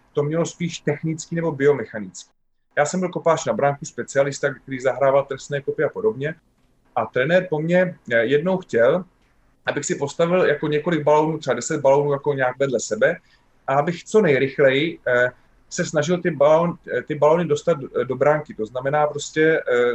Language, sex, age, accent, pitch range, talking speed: Czech, male, 30-49, native, 140-175 Hz, 155 wpm